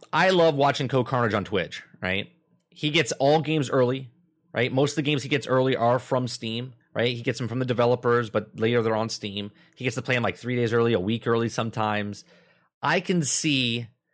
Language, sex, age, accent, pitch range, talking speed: English, male, 30-49, American, 110-140 Hz, 220 wpm